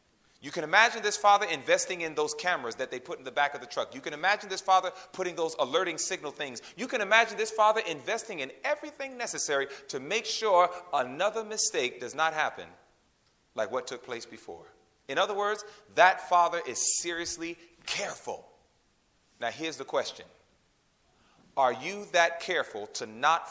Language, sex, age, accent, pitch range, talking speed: English, male, 40-59, American, 180-280 Hz, 175 wpm